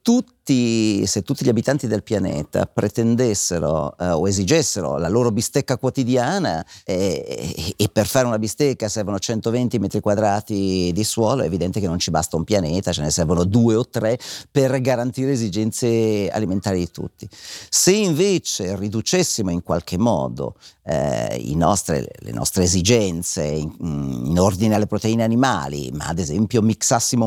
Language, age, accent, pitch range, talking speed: Italian, 50-69, native, 95-125 Hz, 155 wpm